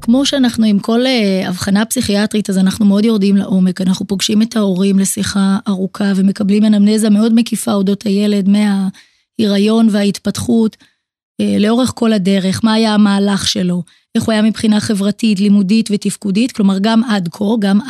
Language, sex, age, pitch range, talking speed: Hebrew, female, 20-39, 200-230 Hz, 150 wpm